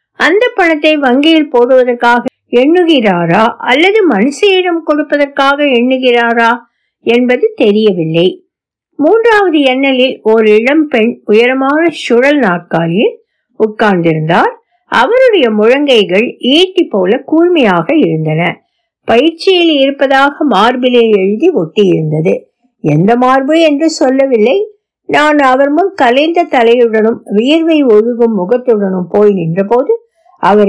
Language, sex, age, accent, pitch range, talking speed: Tamil, female, 60-79, native, 210-320 Hz, 90 wpm